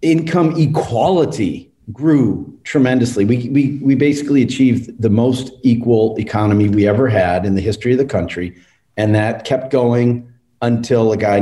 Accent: American